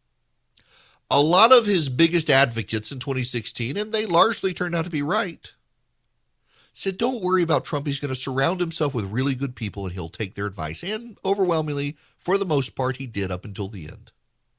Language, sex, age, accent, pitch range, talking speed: English, male, 40-59, American, 105-170 Hz, 195 wpm